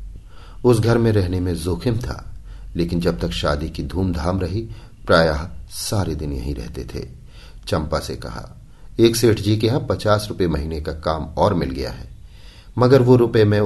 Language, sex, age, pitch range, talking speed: Hindi, male, 50-69, 75-105 Hz, 180 wpm